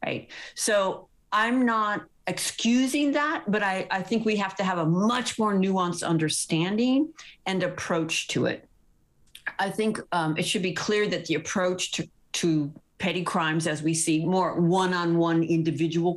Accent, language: American, English